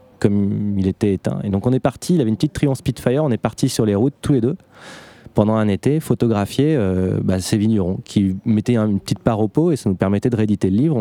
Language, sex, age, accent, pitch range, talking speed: French, male, 20-39, French, 100-120 Hz, 255 wpm